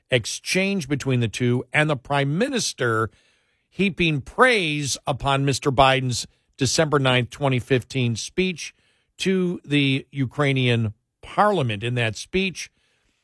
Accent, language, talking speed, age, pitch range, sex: American, English, 110 wpm, 50-69, 120-145 Hz, male